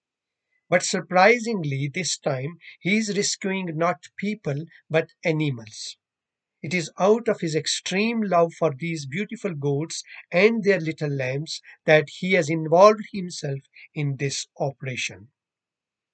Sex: male